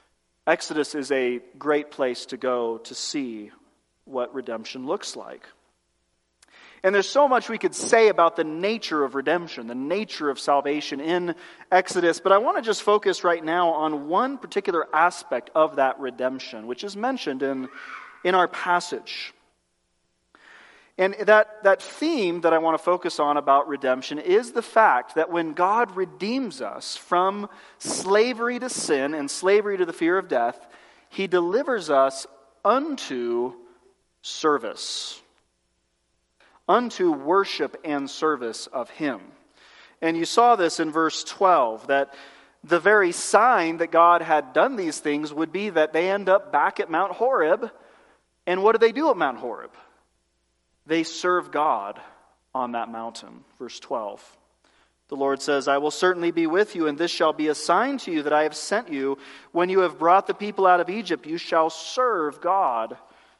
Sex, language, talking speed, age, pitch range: male, English, 165 wpm, 30-49, 135-195 Hz